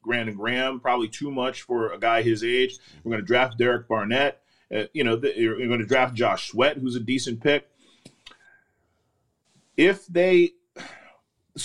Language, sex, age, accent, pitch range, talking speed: English, male, 40-59, American, 120-155 Hz, 170 wpm